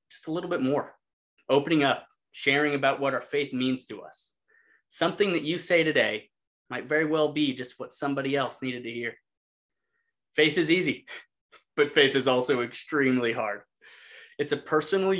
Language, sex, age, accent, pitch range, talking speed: English, male, 30-49, American, 125-165 Hz, 170 wpm